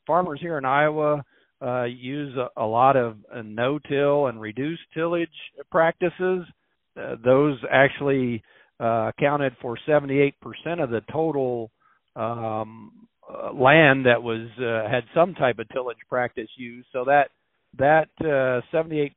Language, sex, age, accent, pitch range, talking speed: English, male, 50-69, American, 120-145 Hz, 135 wpm